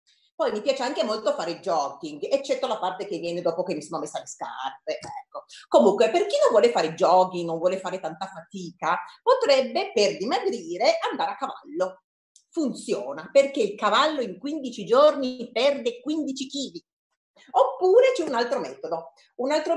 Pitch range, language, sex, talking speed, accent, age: 210-320 Hz, Italian, female, 165 wpm, native, 40-59